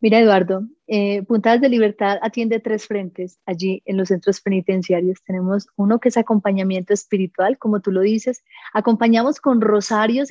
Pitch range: 195-245 Hz